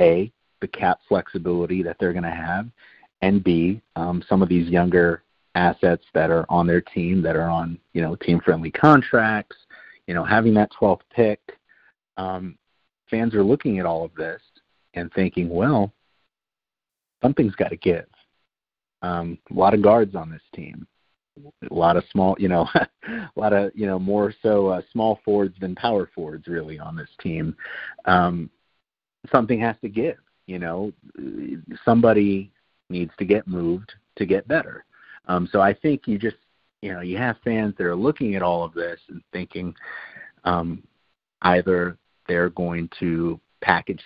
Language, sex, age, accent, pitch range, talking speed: English, male, 40-59, American, 85-105 Hz, 165 wpm